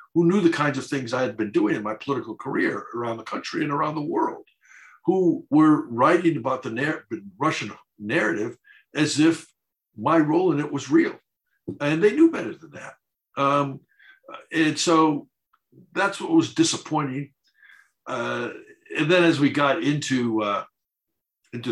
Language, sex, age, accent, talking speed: English, male, 60-79, American, 160 wpm